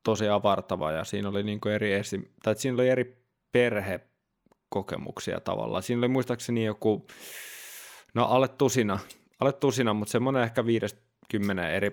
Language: Finnish